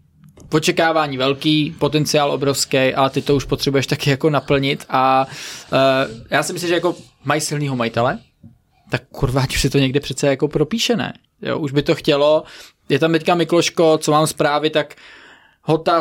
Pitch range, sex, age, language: 135-155 Hz, male, 20-39, Czech